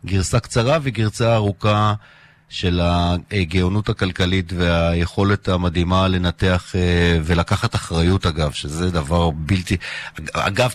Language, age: Hebrew, 30-49